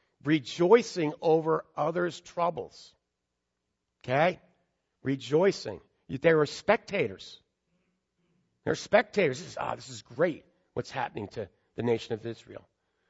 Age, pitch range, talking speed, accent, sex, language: 50-69, 120-165 Hz, 100 wpm, American, male, English